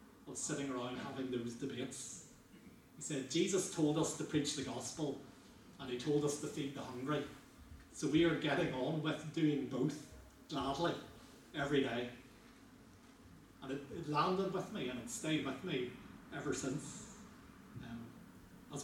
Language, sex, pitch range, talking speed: English, male, 125-150 Hz, 155 wpm